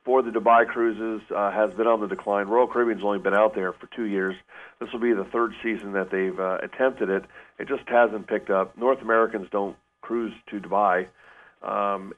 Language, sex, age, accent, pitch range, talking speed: English, male, 40-59, American, 95-110 Hz, 205 wpm